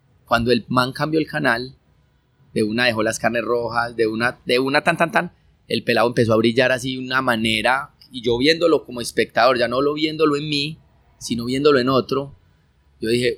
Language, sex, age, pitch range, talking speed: Spanish, male, 30-49, 115-140 Hz, 200 wpm